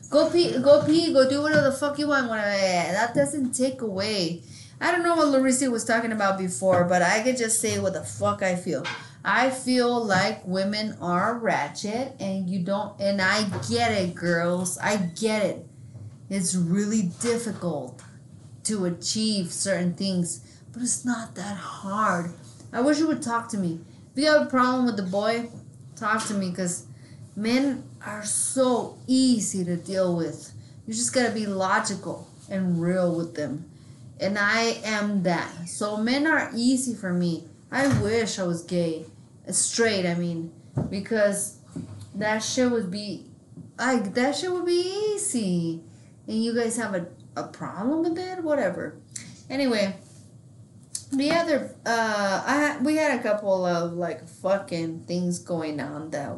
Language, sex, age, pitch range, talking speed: English, female, 30-49, 170-240 Hz, 165 wpm